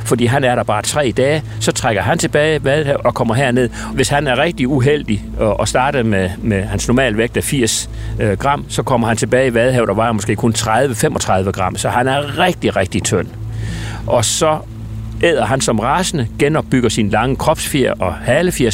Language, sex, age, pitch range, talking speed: Danish, male, 60-79, 110-140 Hz, 195 wpm